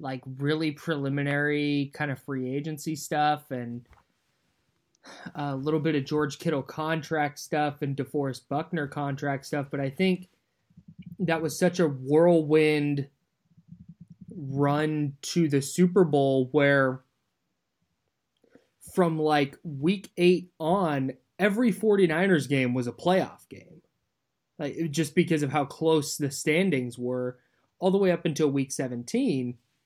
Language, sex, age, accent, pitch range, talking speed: English, male, 20-39, American, 140-175 Hz, 130 wpm